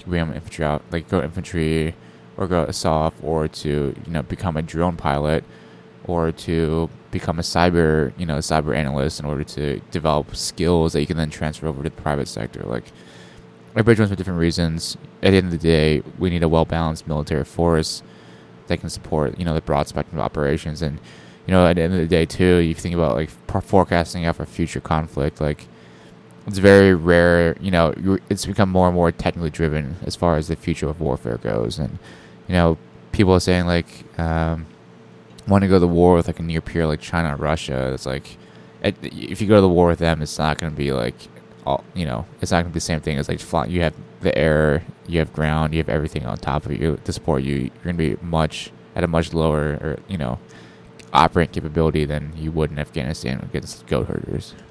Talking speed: 225 wpm